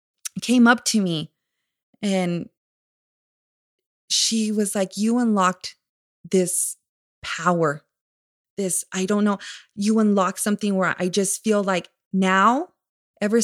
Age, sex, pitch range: 20-39, female, 170-200 Hz